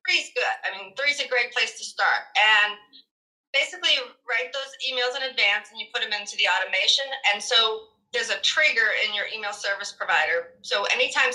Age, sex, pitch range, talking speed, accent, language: 40-59, female, 215-280 Hz, 190 wpm, American, English